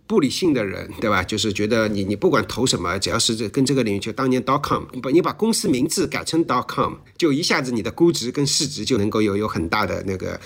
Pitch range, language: 105-135 Hz, Chinese